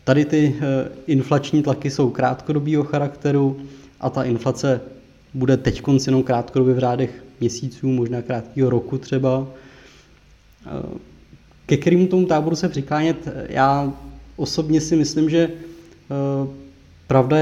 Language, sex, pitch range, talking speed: Czech, male, 130-145 Hz, 125 wpm